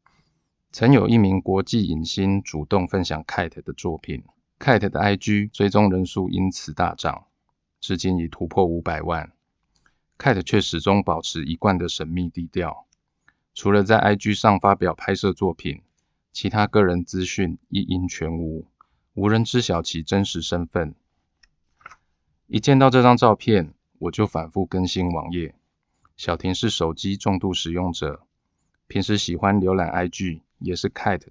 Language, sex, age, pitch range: Chinese, male, 20-39, 85-100 Hz